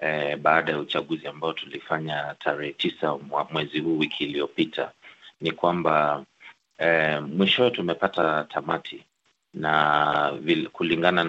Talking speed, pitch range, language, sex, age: 105 wpm, 75-80 Hz, Swahili, male, 30-49